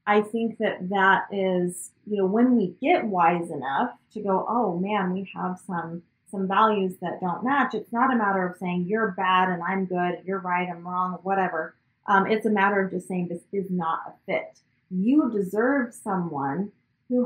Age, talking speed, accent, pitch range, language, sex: 30-49, 195 wpm, American, 180-215 Hz, English, female